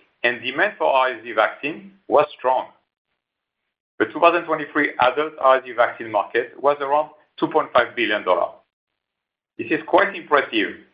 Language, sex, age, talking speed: English, male, 50-69, 115 wpm